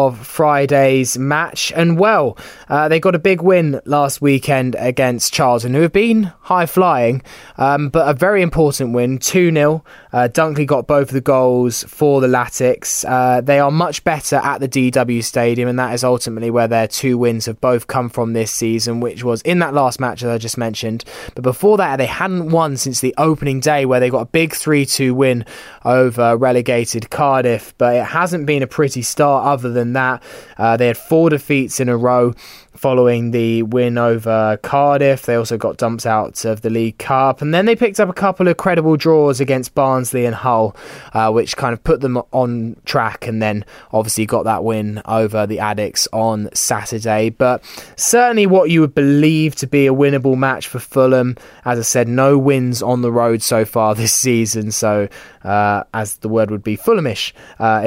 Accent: British